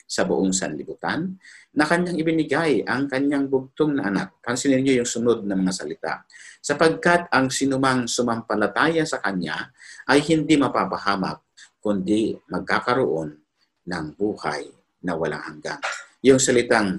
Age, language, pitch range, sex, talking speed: 50-69, Filipino, 95-135 Hz, male, 125 wpm